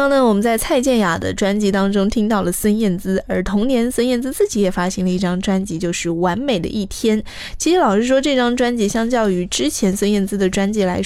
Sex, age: female, 20-39